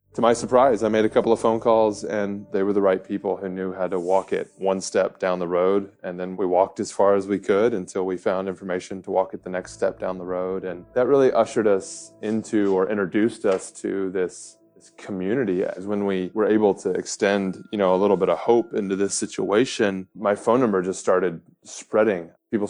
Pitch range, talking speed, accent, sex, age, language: 90-100 Hz, 225 wpm, American, male, 20-39, English